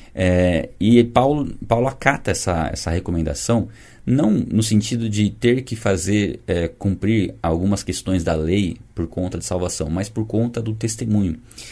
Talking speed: 155 wpm